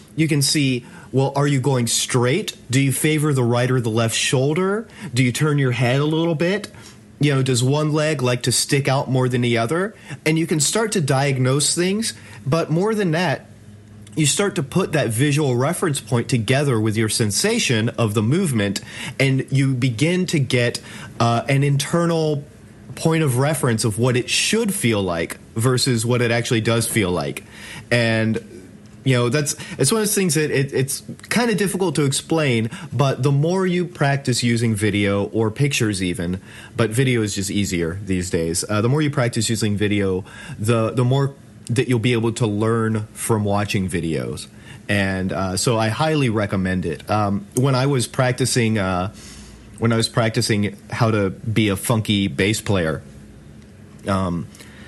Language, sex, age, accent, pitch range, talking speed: English, male, 30-49, American, 105-140 Hz, 180 wpm